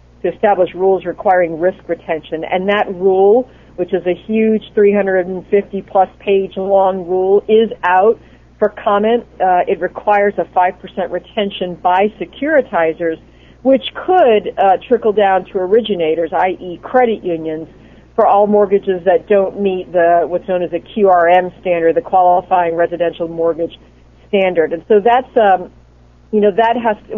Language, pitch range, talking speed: English, 170-205 Hz, 150 wpm